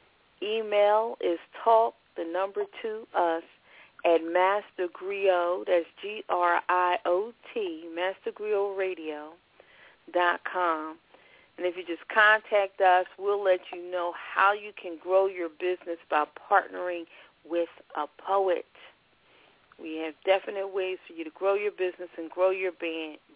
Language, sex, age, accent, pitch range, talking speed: English, female, 40-59, American, 170-215 Hz, 120 wpm